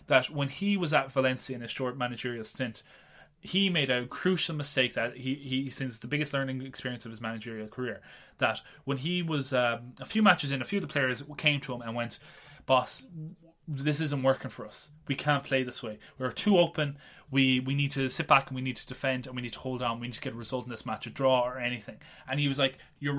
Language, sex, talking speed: English, male, 250 wpm